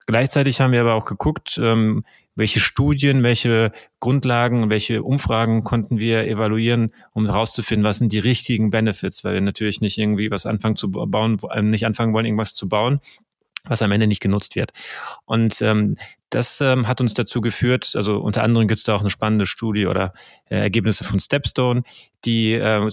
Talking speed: 180 wpm